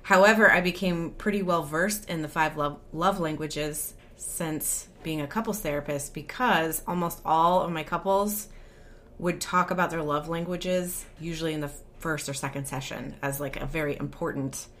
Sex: female